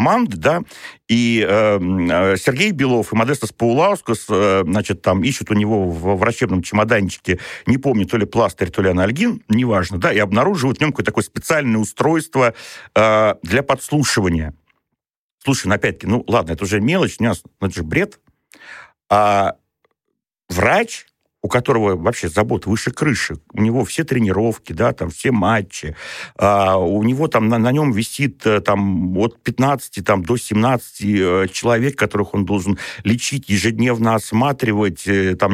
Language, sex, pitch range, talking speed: Russian, male, 100-120 Hz, 150 wpm